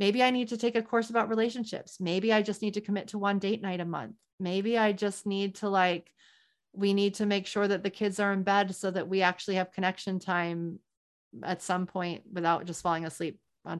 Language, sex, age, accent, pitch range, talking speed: English, female, 30-49, American, 180-220 Hz, 230 wpm